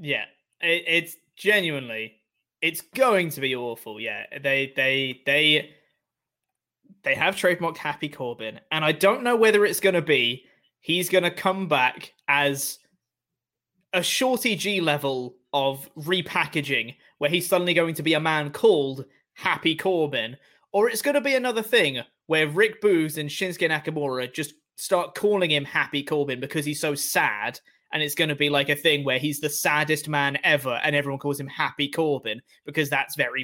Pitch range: 145-190 Hz